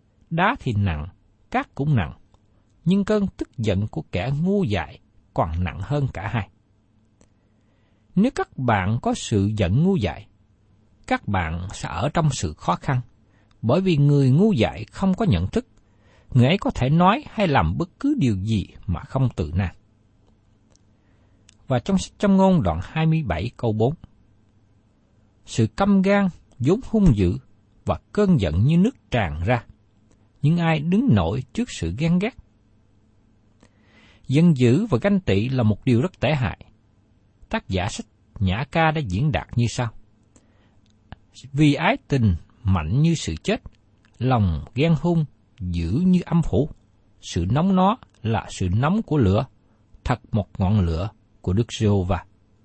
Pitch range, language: 100-145 Hz, Vietnamese